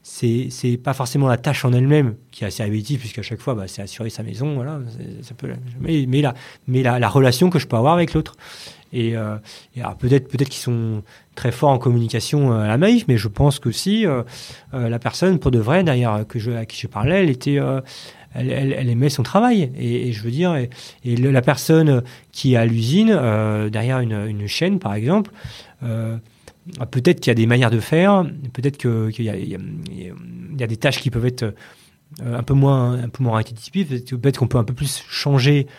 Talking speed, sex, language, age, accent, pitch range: 235 wpm, male, French, 30-49, French, 120-145 Hz